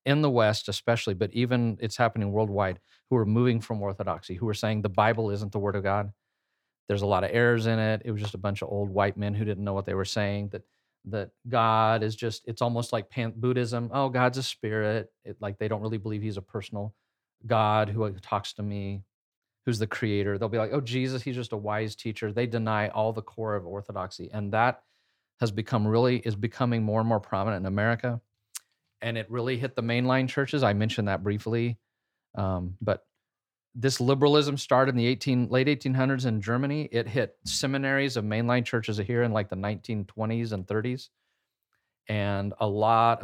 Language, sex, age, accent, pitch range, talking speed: English, male, 40-59, American, 105-120 Hz, 205 wpm